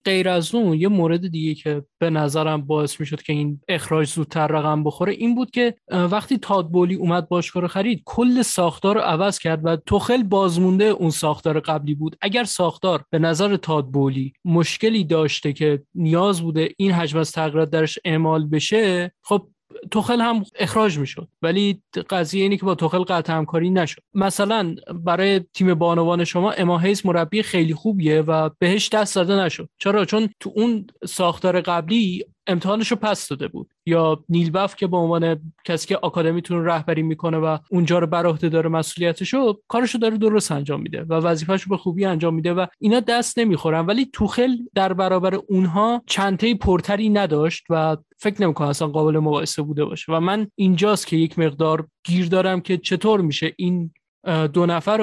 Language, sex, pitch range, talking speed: Persian, male, 160-200 Hz, 175 wpm